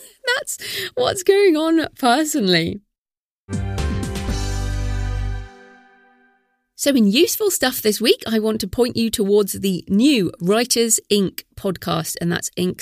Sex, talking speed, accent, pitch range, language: female, 115 wpm, British, 175-230 Hz, English